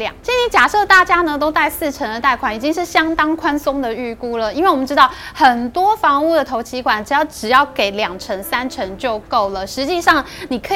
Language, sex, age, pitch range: Chinese, female, 20-39, 245-335 Hz